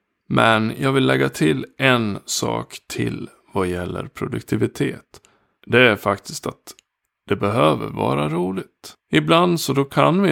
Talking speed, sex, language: 140 wpm, male, Swedish